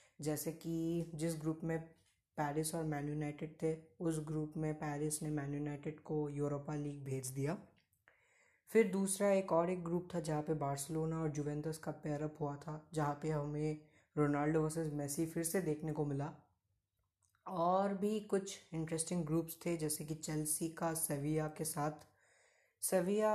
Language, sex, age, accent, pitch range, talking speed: Hindi, female, 20-39, native, 150-170 Hz, 160 wpm